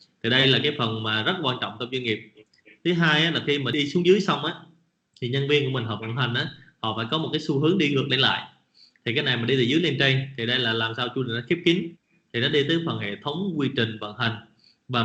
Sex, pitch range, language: male, 120-165 Hz, English